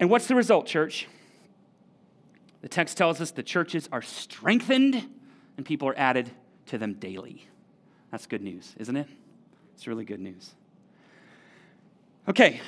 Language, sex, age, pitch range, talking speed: English, male, 30-49, 135-195 Hz, 140 wpm